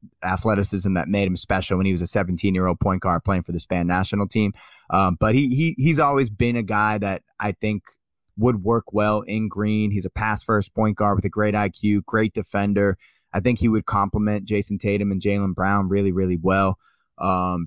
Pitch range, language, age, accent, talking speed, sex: 100-110 Hz, English, 20-39, American, 215 wpm, male